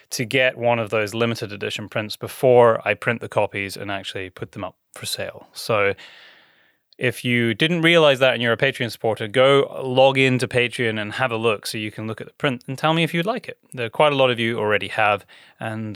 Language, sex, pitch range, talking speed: English, male, 115-150 Hz, 235 wpm